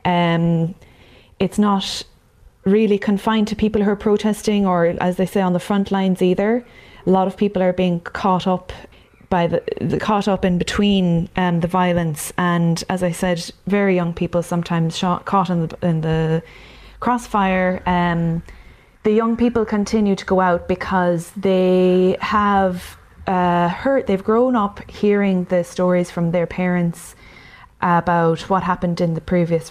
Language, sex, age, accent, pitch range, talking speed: English, female, 20-39, Irish, 170-195 Hz, 160 wpm